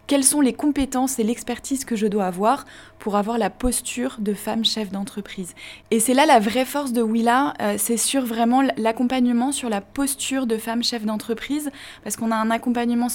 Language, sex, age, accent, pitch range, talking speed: French, female, 20-39, French, 205-245 Hz, 190 wpm